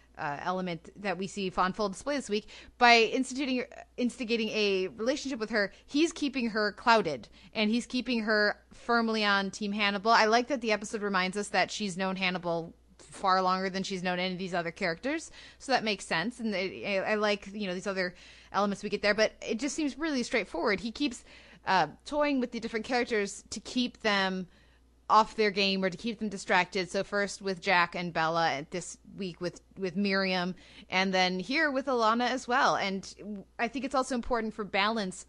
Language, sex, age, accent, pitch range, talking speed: English, female, 20-39, American, 190-235 Hz, 200 wpm